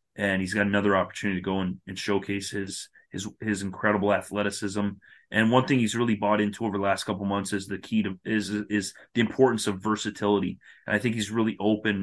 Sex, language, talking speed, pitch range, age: male, English, 215 wpm, 100-110 Hz, 30-49